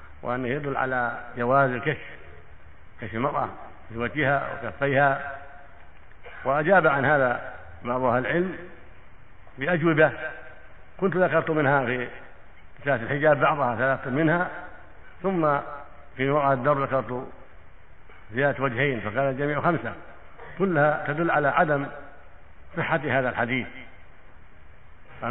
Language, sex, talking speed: Arabic, male, 95 wpm